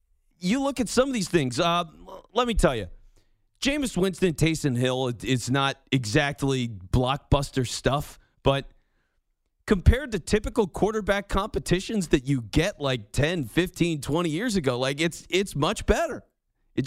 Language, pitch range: English, 135-195 Hz